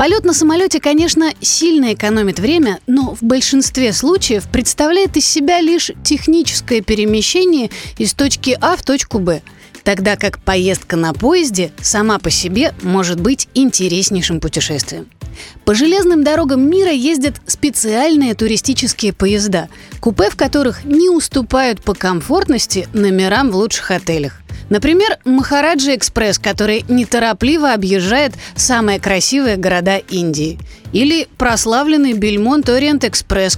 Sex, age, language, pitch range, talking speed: female, 30-49, Russian, 195-285 Hz, 120 wpm